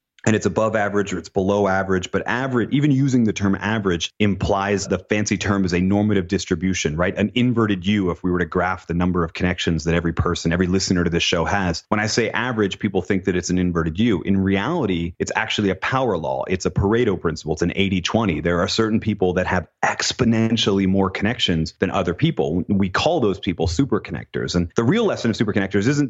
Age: 30-49